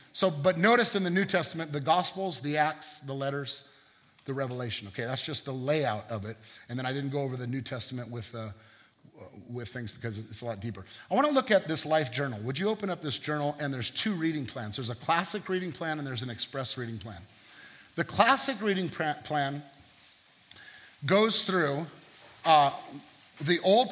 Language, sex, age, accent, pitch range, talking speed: English, male, 40-59, American, 140-190 Hz, 200 wpm